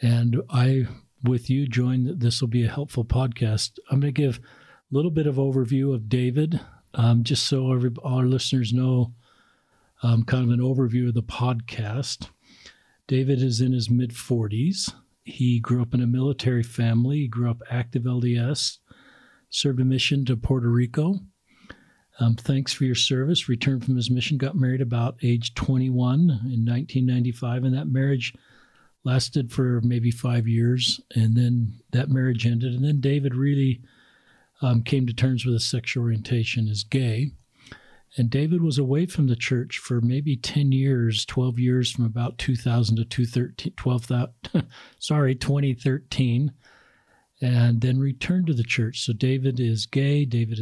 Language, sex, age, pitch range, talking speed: English, male, 50-69, 120-135 Hz, 160 wpm